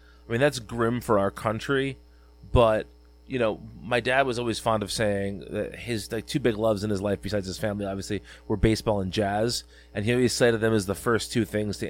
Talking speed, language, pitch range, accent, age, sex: 225 wpm, English, 95-115 Hz, American, 30-49, male